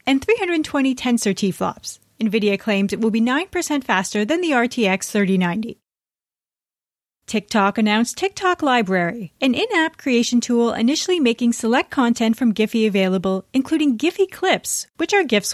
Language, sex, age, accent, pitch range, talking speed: English, female, 30-49, American, 200-285 Hz, 140 wpm